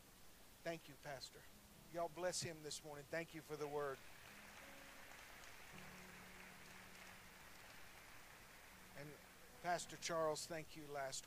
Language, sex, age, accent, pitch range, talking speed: English, male, 50-69, American, 135-170 Hz, 100 wpm